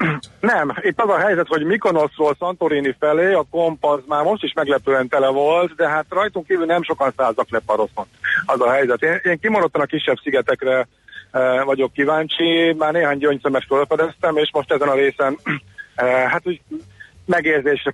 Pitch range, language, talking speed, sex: 125-155 Hz, Hungarian, 165 wpm, male